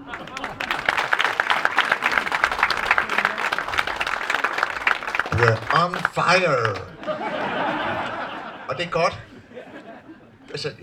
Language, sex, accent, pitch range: Danish, male, native, 105-135 Hz